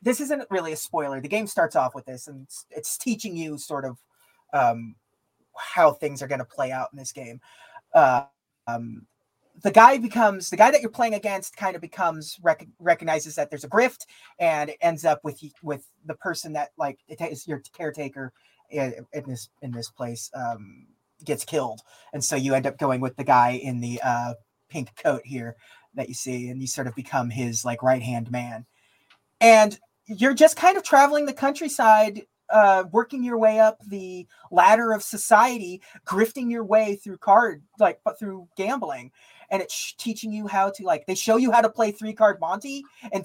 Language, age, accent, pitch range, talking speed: English, 30-49, American, 135-215 Hz, 195 wpm